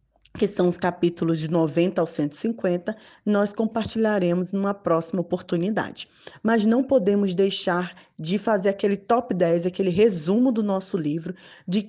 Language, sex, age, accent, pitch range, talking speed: Portuguese, female, 20-39, Brazilian, 175-215 Hz, 140 wpm